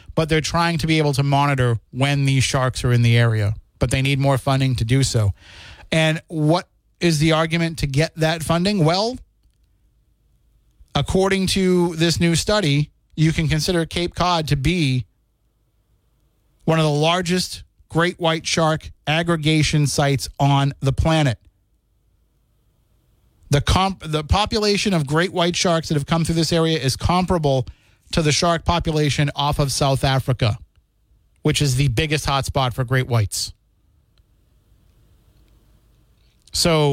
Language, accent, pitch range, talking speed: English, American, 110-160 Hz, 145 wpm